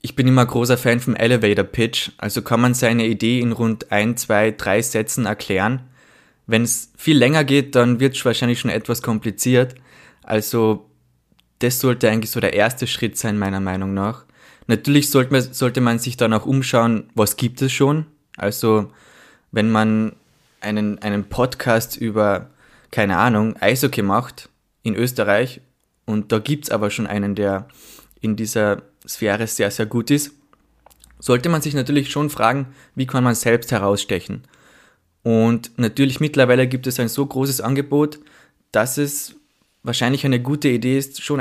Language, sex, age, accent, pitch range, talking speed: German, male, 20-39, German, 110-130 Hz, 160 wpm